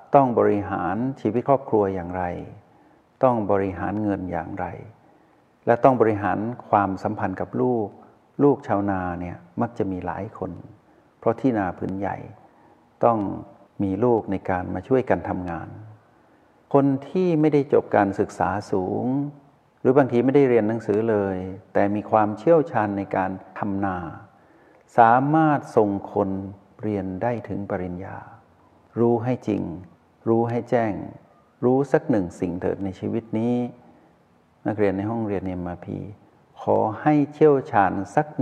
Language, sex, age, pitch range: Thai, male, 60-79, 95-125 Hz